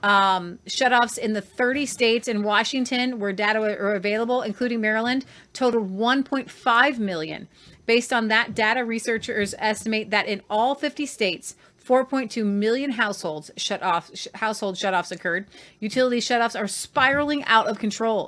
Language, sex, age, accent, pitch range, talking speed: English, female, 30-49, American, 190-230 Hz, 145 wpm